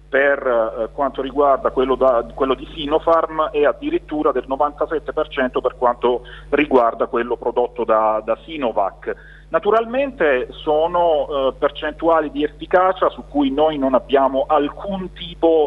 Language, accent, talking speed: Italian, native, 125 wpm